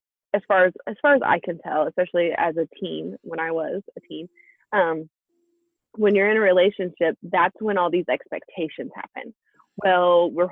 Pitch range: 185-270 Hz